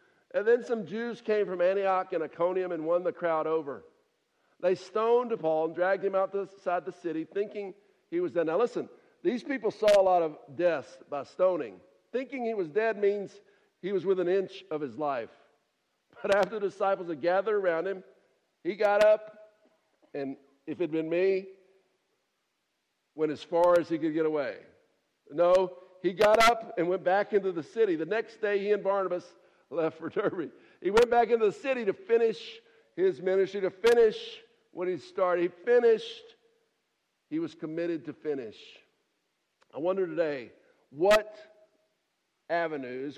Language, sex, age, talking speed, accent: English, male, 50-69, 170 wpm, American